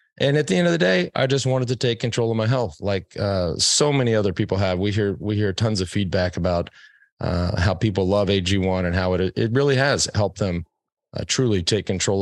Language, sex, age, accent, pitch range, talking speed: English, male, 40-59, American, 95-130 Hz, 235 wpm